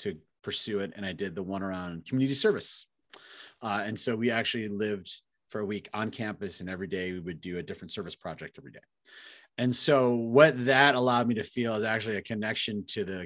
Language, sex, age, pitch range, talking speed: English, male, 30-49, 90-135 Hz, 215 wpm